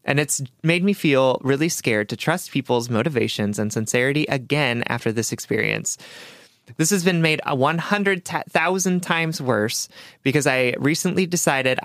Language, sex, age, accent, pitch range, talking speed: English, male, 20-39, American, 125-165 Hz, 140 wpm